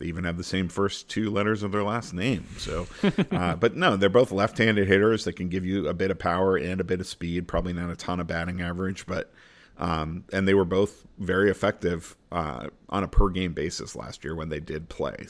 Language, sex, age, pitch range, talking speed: English, male, 40-59, 90-100 Hz, 235 wpm